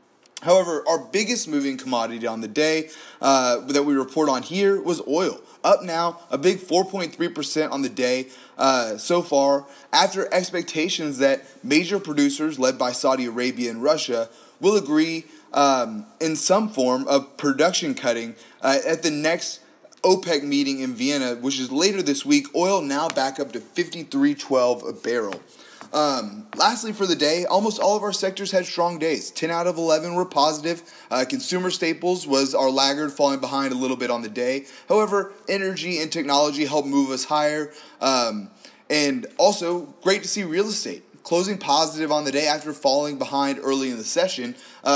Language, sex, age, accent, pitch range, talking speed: English, male, 30-49, American, 135-175 Hz, 175 wpm